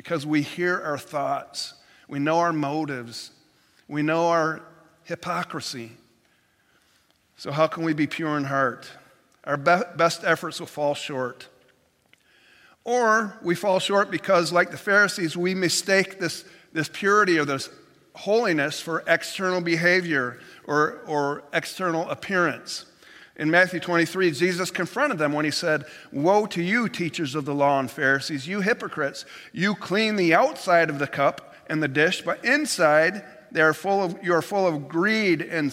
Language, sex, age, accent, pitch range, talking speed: English, male, 50-69, American, 145-180 Hz, 155 wpm